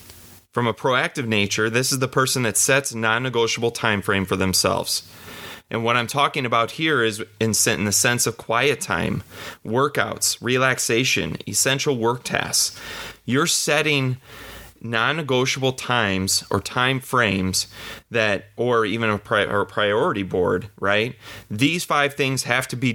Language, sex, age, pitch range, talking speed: English, male, 30-49, 105-130 Hz, 145 wpm